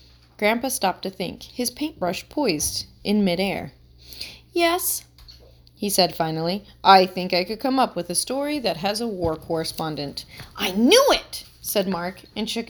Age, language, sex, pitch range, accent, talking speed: 30-49, English, female, 175-260 Hz, American, 160 wpm